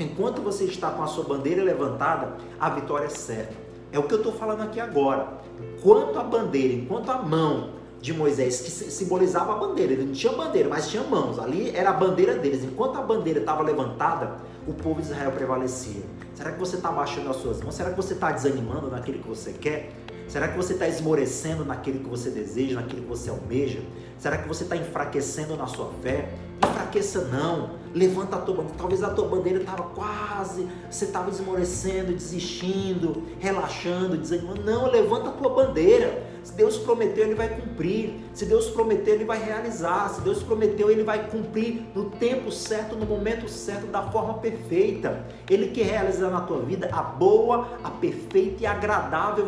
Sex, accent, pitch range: male, Brazilian, 155-225 Hz